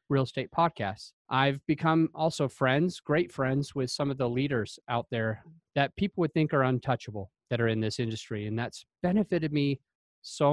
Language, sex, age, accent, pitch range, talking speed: English, male, 30-49, American, 120-145 Hz, 180 wpm